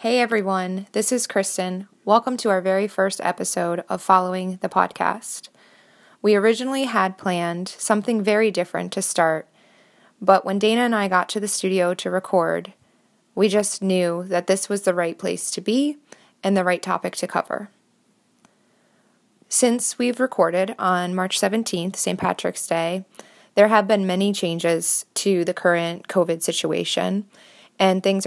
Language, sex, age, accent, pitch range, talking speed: English, female, 20-39, American, 180-210 Hz, 155 wpm